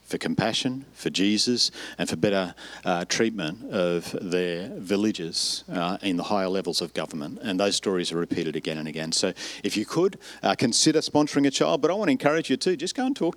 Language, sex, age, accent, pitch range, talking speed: English, male, 50-69, Australian, 100-140 Hz, 210 wpm